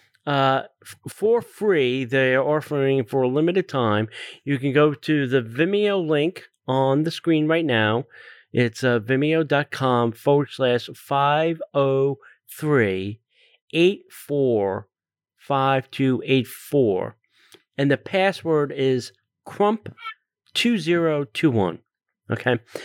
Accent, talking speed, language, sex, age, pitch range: American, 90 wpm, English, male, 40-59, 125-160 Hz